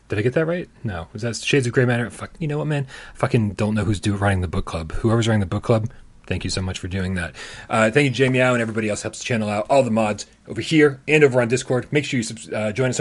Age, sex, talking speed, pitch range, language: 30-49, male, 300 wpm, 100-130 Hz, English